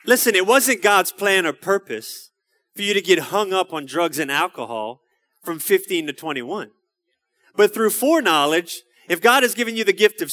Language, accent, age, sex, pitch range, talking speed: English, American, 30-49, male, 200-300 Hz, 185 wpm